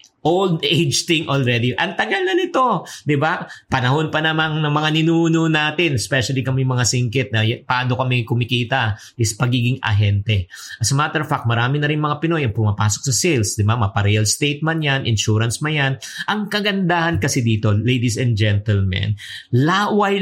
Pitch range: 115-165 Hz